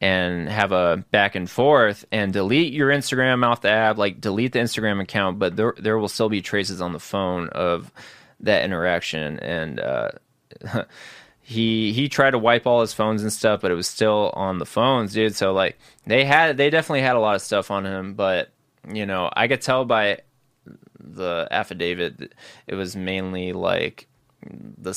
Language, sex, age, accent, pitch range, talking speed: English, male, 20-39, American, 95-115 Hz, 185 wpm